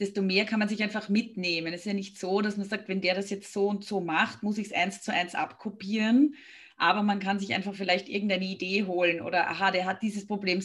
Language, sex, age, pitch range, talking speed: German, female, 30-49, 180-205 Hz, 255 wpm